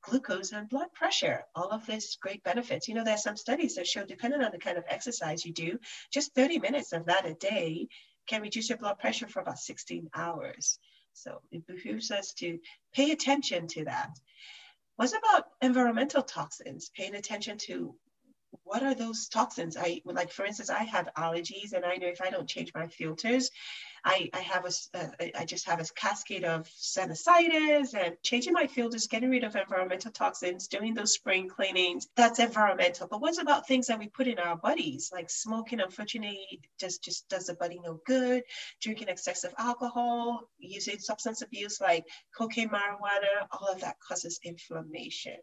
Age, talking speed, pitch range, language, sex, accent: 40-59, 185 wpm, 180-255 Hz, English, female, American